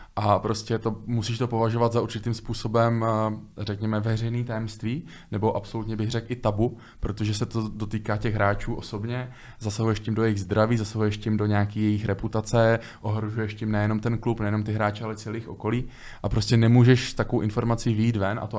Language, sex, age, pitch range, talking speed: Czech, male, 20-39, 100-110 Hz, 180 wpm